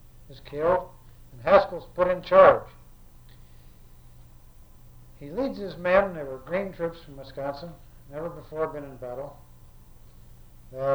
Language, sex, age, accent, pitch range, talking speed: English, male, 60-79, American, 120-175 Hz, 120 wpm